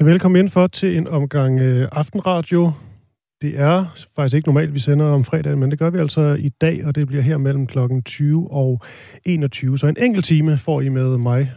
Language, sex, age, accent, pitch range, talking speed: Danish, male, 30-49, native, 130-165 Hz, 215 wpm